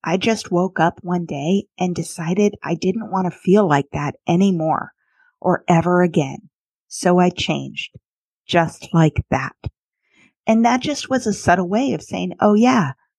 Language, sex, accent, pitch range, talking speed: English, female, American, 165-205 Hz, 165 wpm